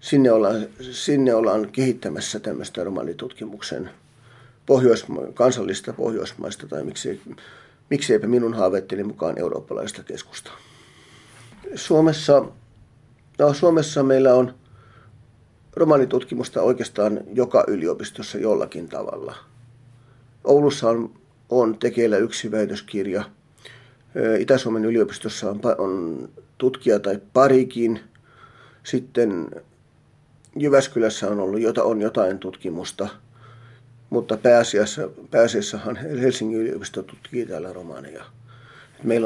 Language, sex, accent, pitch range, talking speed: Finnish, male, native, 115-135 Hz, 90 wpm